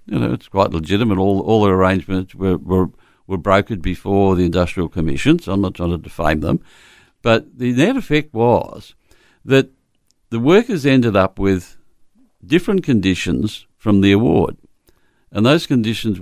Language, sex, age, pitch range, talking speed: English, male, 60-79, 90-115 Hz, 160 wpm